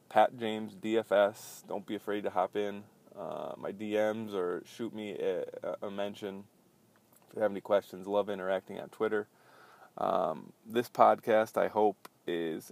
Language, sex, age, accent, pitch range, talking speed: English, male, 20-39, American, 100-115 Hz, 155 wpm